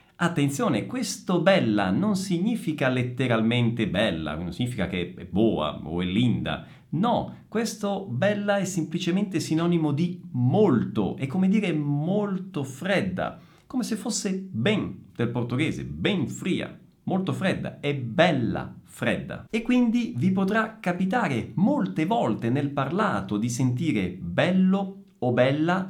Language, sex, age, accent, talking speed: Italian, male, 50-69, native, 125 wpm